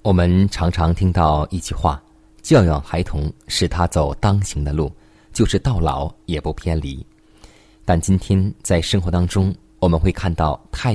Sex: male